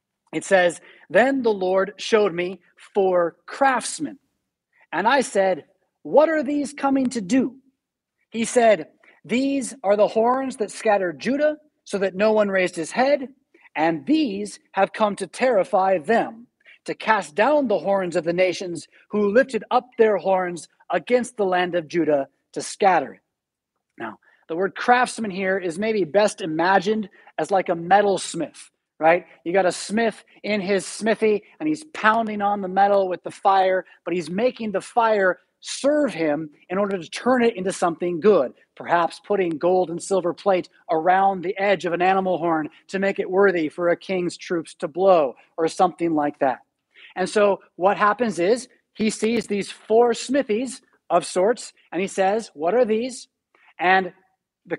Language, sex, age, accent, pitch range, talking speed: English, male, 40-59, American, 180-230 Hz, 170 wpm